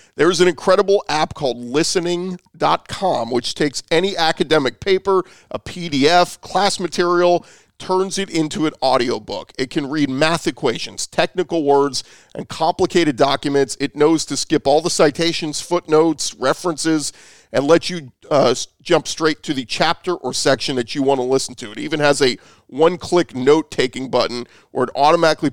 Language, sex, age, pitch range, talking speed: English, male, 40-59, 135-170 Hz, 155 wpm